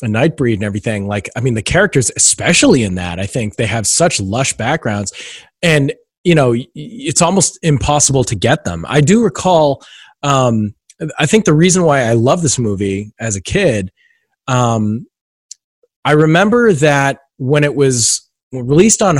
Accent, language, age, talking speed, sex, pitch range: American, English, 30-49, 165 wpm, male, 115-165 Hz